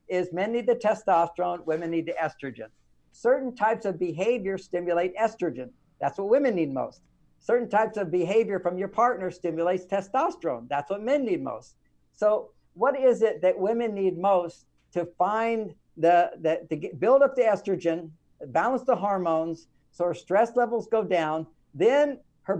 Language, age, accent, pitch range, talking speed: English, 60-79, American, 170-225 Hz, 155 wpm